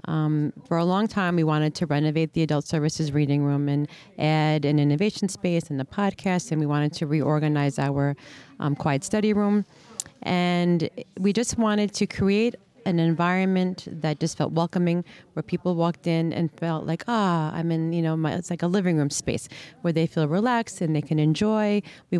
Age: 40-59